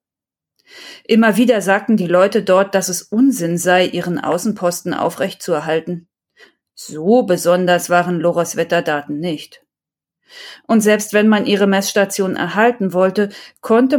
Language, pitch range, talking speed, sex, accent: German, 175-215 Hz, 120 wpm, female, German